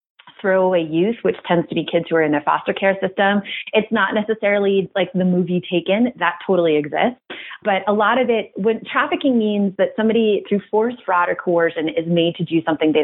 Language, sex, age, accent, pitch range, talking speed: English, female, 30-49, American, 170-215 Hz, 205 wpm